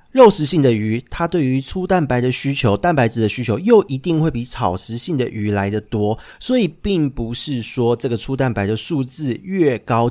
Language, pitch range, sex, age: Chinese, 110-155 Hz, male, 40-59